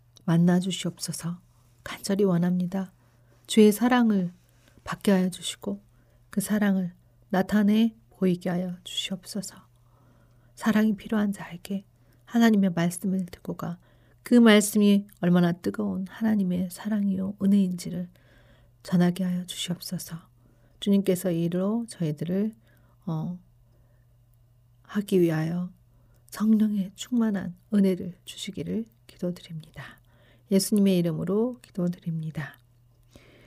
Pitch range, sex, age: 125-200 Hz, female, 40-59